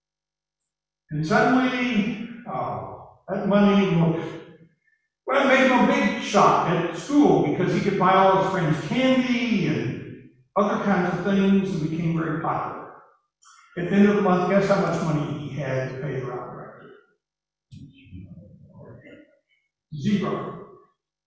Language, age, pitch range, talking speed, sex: English, 60-79, 155-205 Hz, 140 wpm, male